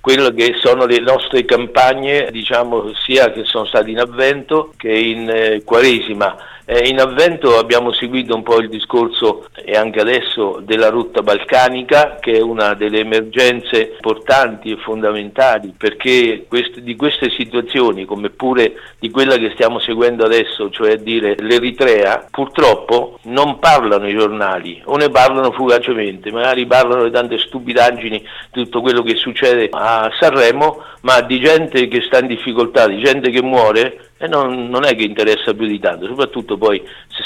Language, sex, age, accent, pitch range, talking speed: Italian, male, 50-69, native, 110-130 Hz, 165 wpm